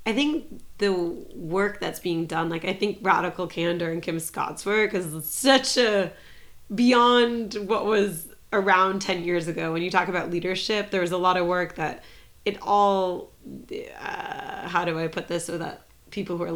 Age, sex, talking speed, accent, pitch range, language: 30-49, female, 185 wpm, American, 170-205 Hz, English